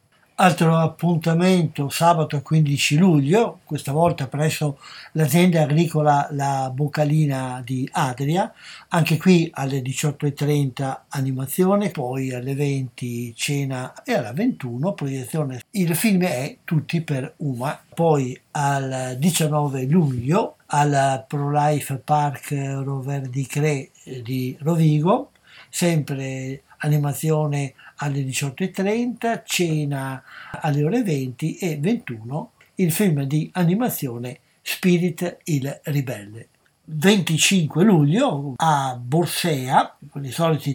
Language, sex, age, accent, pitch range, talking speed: Italian, male, 60-79, native, 140-170 Hz, 100 wpm